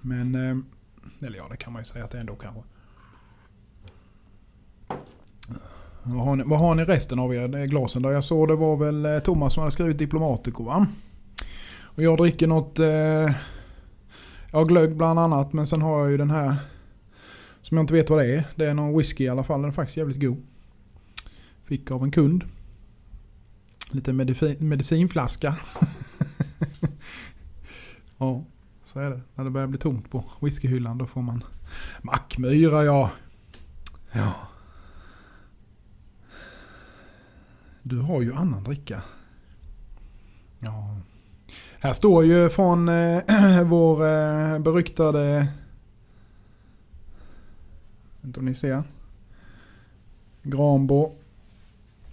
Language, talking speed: Swedish, 130 wpm